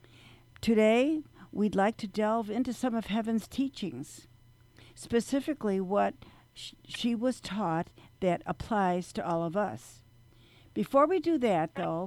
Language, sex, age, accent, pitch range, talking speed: English, female, 60-79, American, 160-225 Hz, 130 wpm